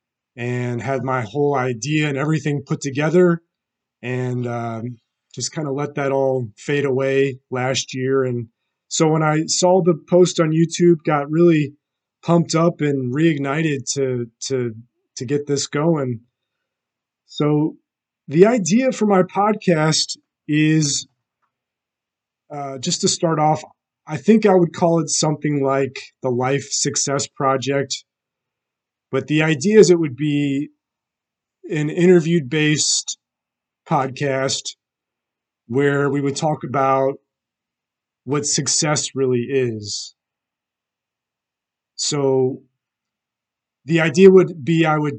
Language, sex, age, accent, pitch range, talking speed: English, male, 30-49, American, 130-155 Hz, 120 wpm